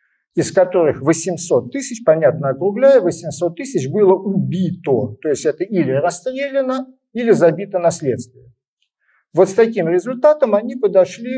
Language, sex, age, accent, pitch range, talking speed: Ukrainian, male, 50-69, native, 160-225 Hz, 125 wpm